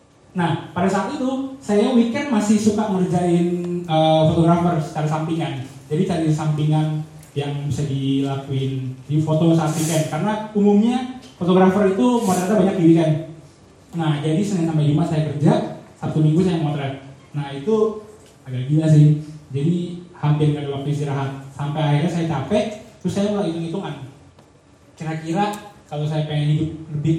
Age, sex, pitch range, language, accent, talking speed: 20-39, male, 150-185 Hz, Indonesian, native, 145 wpm